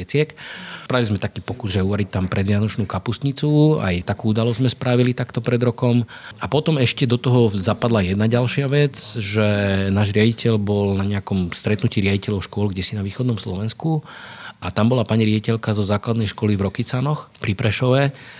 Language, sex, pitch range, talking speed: Slovak, male, 95-115 Hz, 175 wpm